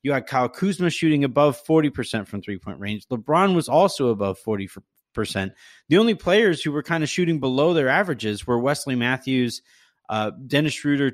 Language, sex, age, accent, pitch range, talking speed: English, male, 30-49, American, 130-170 Hz, 170 wpm